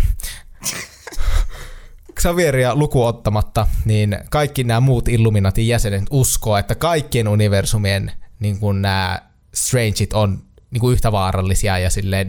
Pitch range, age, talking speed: 100-115 Hz, 20-39, 100 wpm